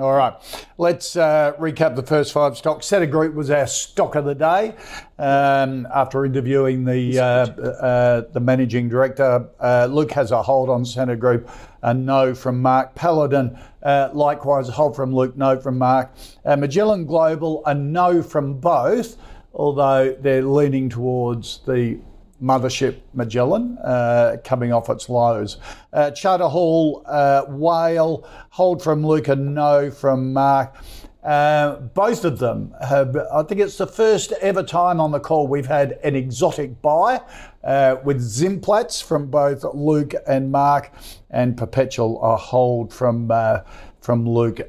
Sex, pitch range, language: male, 125-150 Hz, English